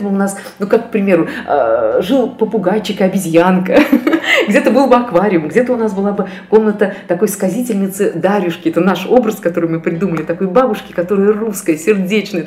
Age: 30-49